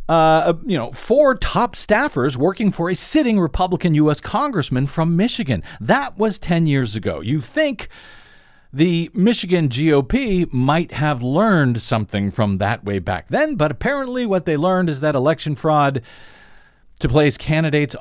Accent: American